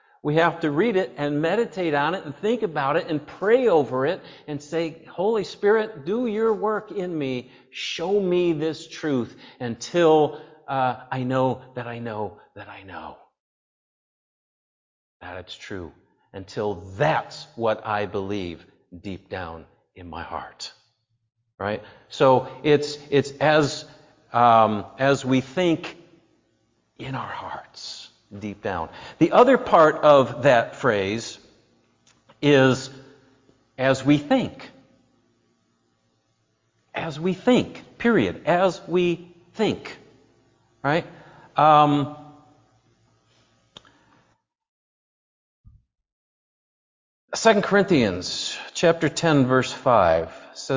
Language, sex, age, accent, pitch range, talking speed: English, male, 50-69, American, 125-175 Hz, 110 wpm